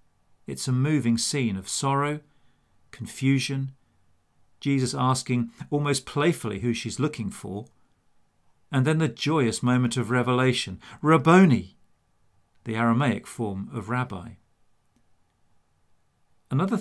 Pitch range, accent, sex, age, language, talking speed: 110-135 Hz, British, male, 40-59, English, 105 wpm